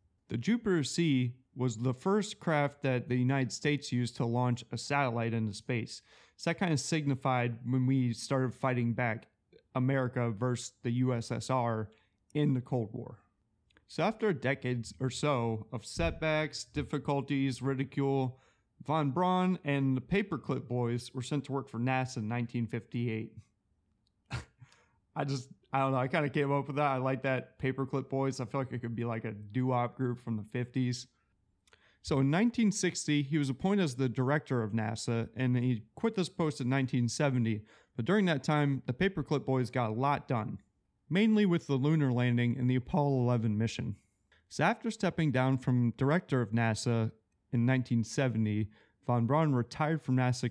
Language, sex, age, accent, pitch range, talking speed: English, male, 30-49, American, 115-145 Hz, 170 wpm